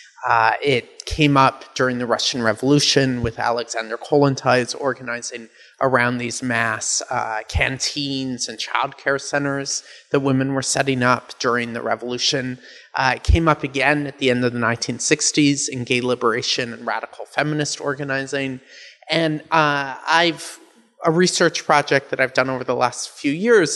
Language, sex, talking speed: English, male, 150 wpm